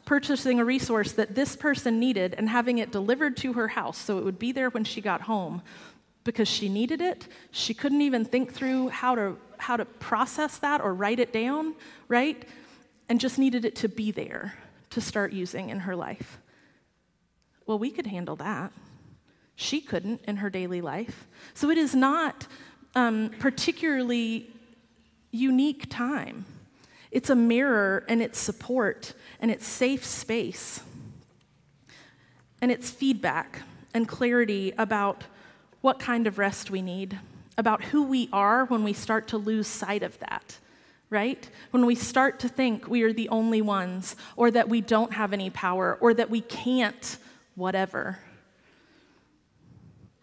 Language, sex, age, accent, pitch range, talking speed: English, female, 30-49, American, 210-255 Hz, 160 wpm